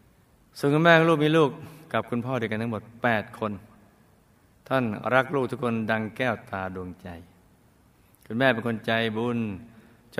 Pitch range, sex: 100-130 Hz, male